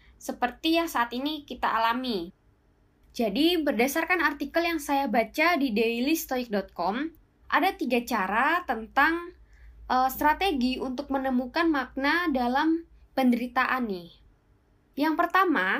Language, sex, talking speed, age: Indonesian, female, 105 wpm, 10-29